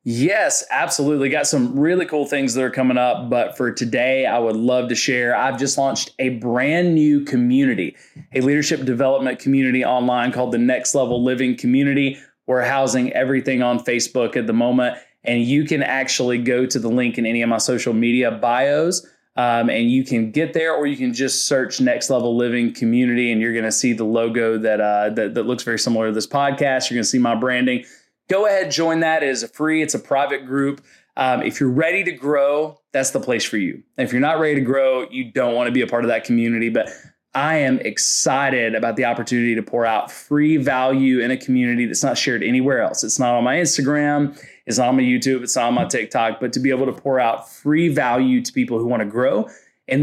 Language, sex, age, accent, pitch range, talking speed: English, male, 20-39, American, 120-145 Hz, 225 wpm